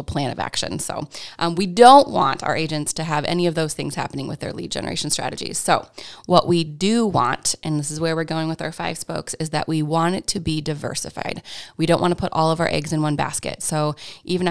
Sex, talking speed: female, 245 wpm